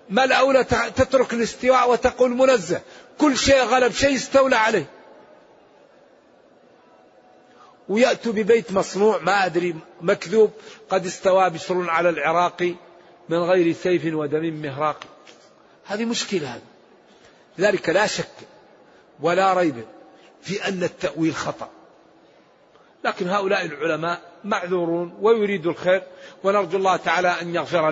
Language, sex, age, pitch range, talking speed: Arabic, male, 50-69, 180-225 Hz, 105 wpm